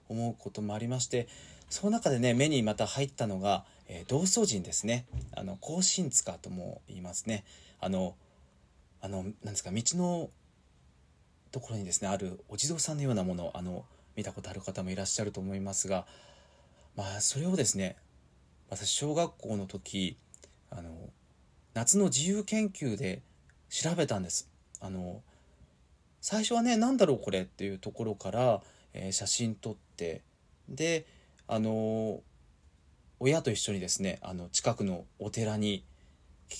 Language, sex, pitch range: Japanese, male, 90-125 Hz